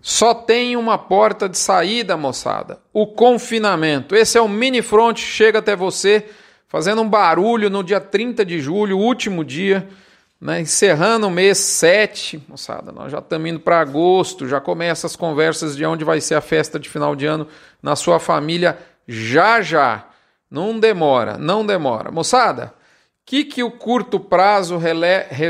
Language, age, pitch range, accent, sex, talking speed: Portuguese, 40-59, 160-205 Hz, Brazilian, male, 165 wpm